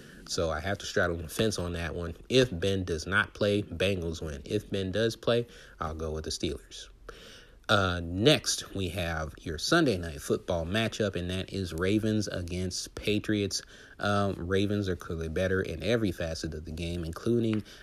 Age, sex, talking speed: 30-49, male, 180 wpm